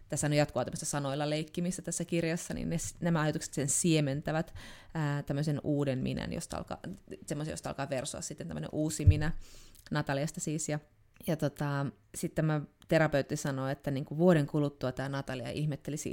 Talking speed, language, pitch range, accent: 160 wpm, Finnish, 135-170 Hz, native